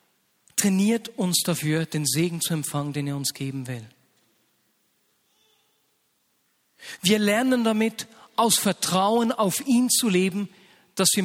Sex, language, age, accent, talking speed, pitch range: male, German, 50-69, German, 125 wpm, 165-215 Hz